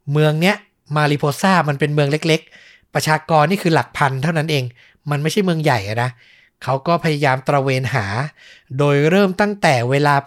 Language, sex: Thai, male